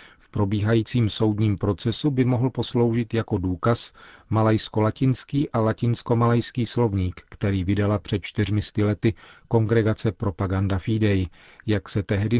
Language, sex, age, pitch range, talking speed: Czech, male, 40-59, 100-115 Hz, 115 wpm